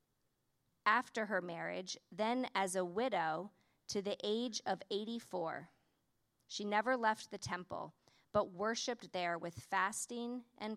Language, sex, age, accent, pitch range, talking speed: English, female, 40-59, American, 170-220 Hz, 130 wpm